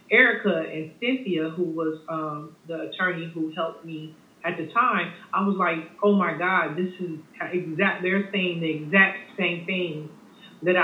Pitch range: 160-195 Hz